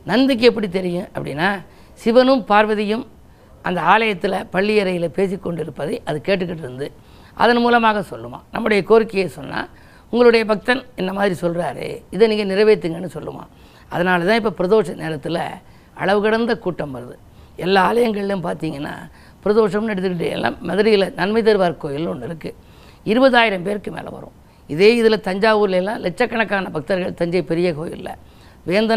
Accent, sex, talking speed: native, female, 130 wpm